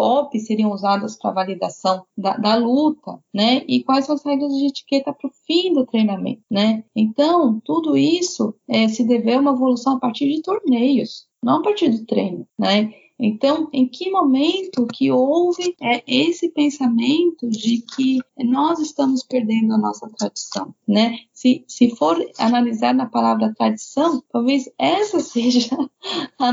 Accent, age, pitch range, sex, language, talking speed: Brazilian, 20-39, 215-280 Hz, female, Portuguese, 155 wpm